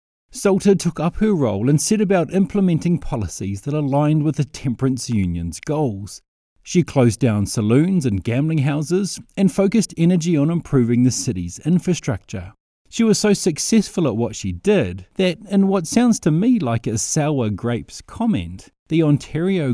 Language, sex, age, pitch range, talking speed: English, male, 30-49, 110-170 Hz, 160 wpm